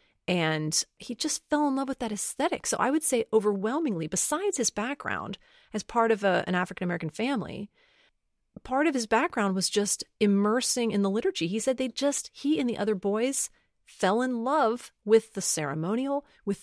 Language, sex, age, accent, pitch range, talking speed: English, female, 30-49, American, 185-260 Hz, 175 wpm